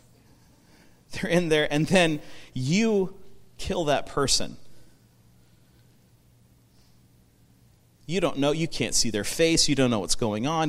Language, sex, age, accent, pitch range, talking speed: English, male, 40-59, American, 120-175 Hz, 130 wpm